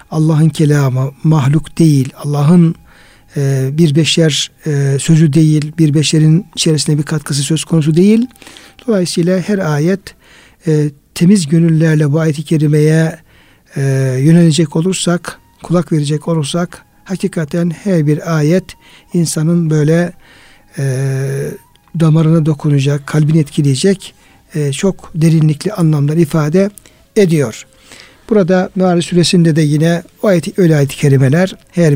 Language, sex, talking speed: Turkish, male, 115 wpm